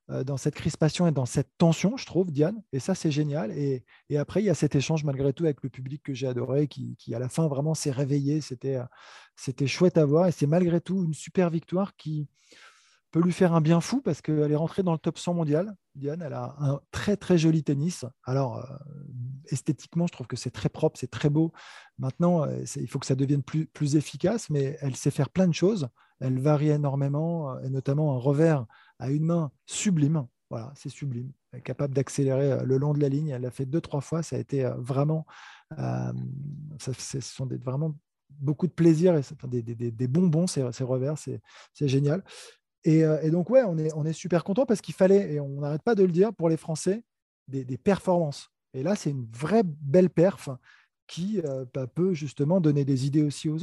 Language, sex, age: French, male, 20-39